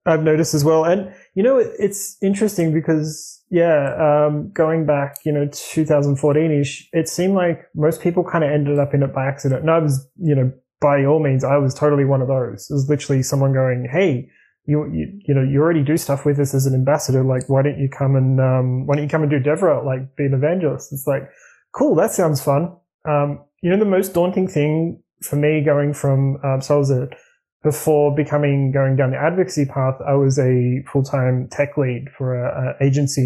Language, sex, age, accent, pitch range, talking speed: English, male, 20-39, Australian, 135-155 Hz, 215 wpm